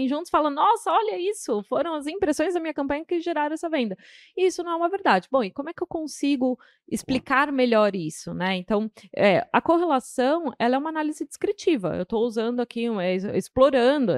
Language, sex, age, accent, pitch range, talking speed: Portuguese, female, 20-39, Brazilian, 210-275 Hz, 205 wpm